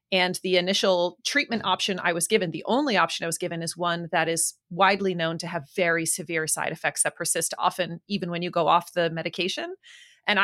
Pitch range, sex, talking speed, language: 175-240 Hz, female, 215 wpm, English